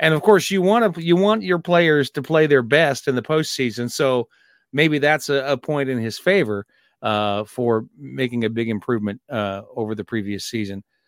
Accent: American